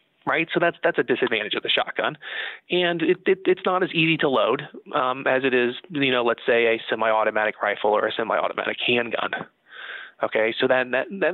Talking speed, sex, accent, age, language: 200 wpm, male, American, 30-49, English